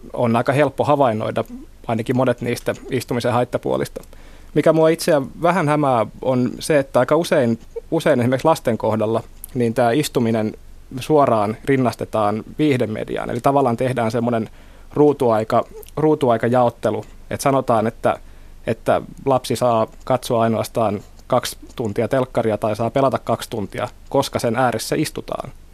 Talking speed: 135 wpm